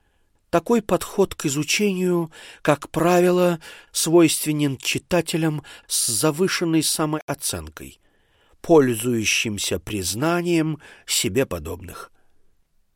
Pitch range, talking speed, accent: 105-165 Hz, 70 wpm, native